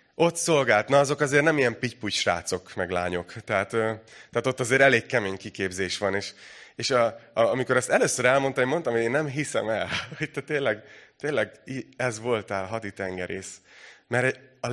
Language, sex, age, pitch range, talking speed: Hungarian, male, 30-49, 100-135 Hz, 175 wpm